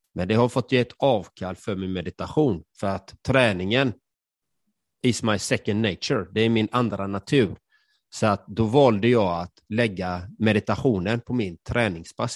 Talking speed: 160 wpm